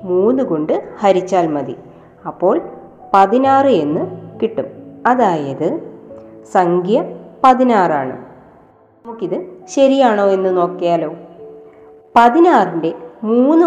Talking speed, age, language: 75 wpm, 20-39, Malayalam